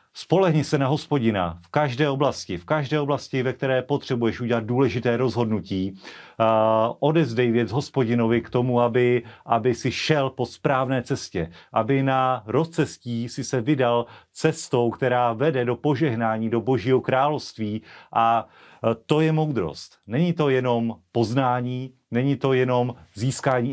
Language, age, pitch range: Slovak, 40-59, 115-135 Hz